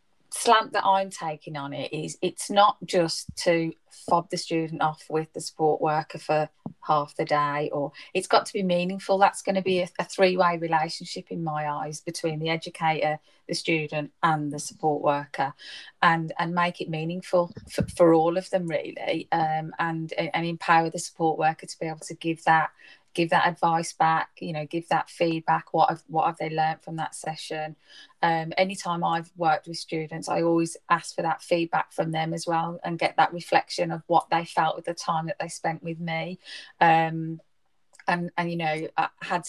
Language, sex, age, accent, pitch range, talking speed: English, female, 30-49, British, 155-175 Hz, 200 wpm